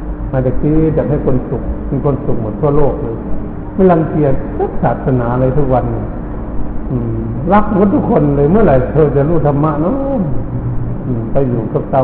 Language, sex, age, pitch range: Thai, male, 60-79, 120-155 Hz